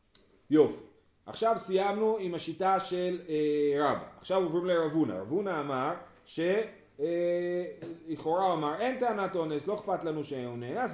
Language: Hebrew